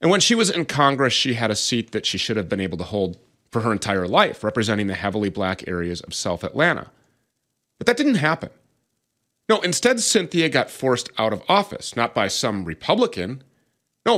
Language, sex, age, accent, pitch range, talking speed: English, male, 30-49, American, 110-160 Hz, 200 wpm